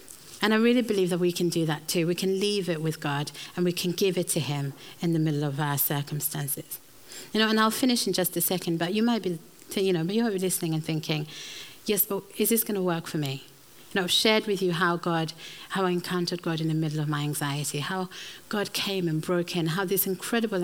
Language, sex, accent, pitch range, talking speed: English, female, British, 160-195 Hz, 255 wpm